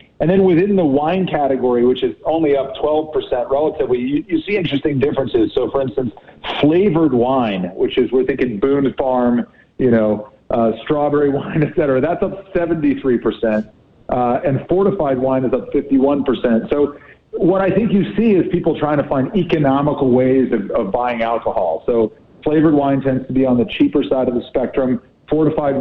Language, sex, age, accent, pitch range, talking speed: English, male, 40-59, American, 125-155 Hz, 175 wpm